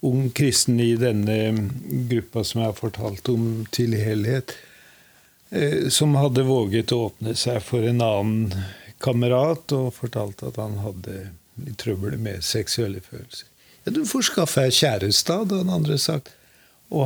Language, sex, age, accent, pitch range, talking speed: English, male, 50-69, Swedish, 120-145 Hz, 130 wpm